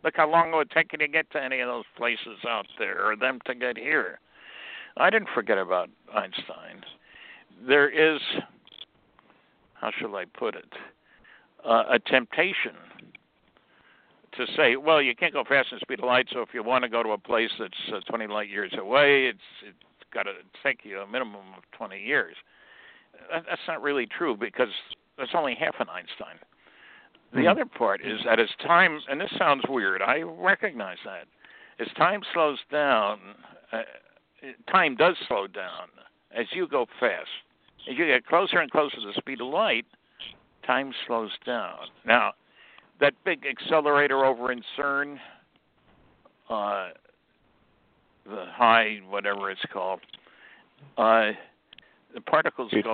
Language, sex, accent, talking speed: English, male, American, 160 wpm